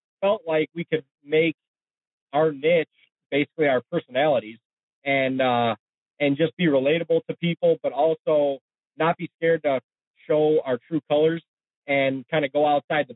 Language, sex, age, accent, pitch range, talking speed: English, male, 30-49, American, 135-165 Hz, 155 wpm